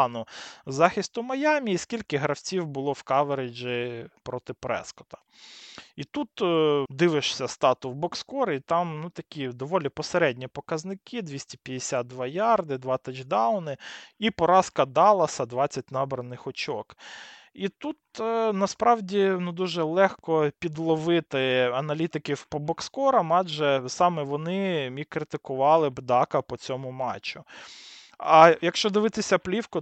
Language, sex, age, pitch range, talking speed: Ukrainian, male, 20-39, 130-175 Hz, 110 wpm